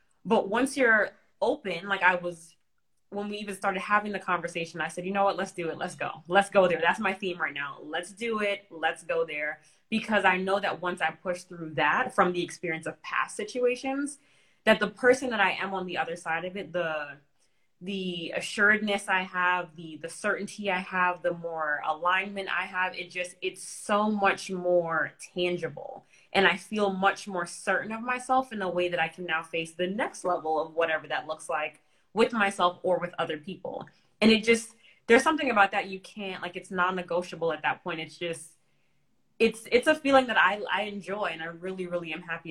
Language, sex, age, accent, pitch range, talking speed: English, female, 20-39, American, 165-200 Hz, 210 wpm